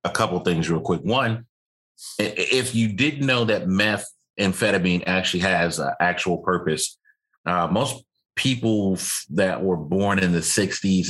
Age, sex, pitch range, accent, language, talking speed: 30-49, male, 90-110 Hz, American, English, 145 wpm